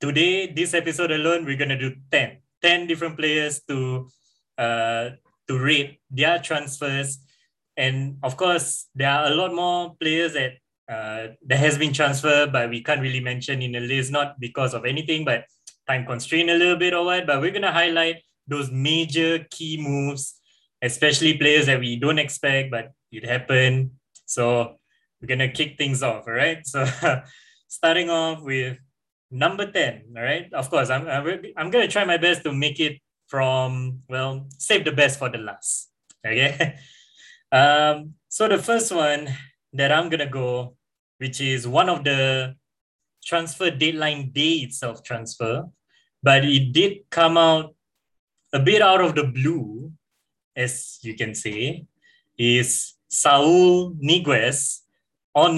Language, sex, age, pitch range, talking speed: English, male, 20-39, 130-160 Hz, 160 wpm